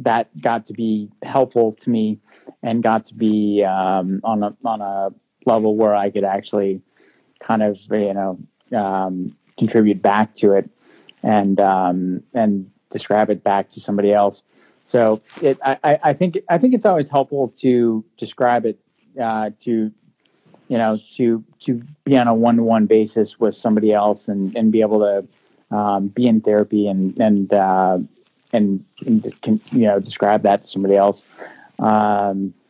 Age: 30-49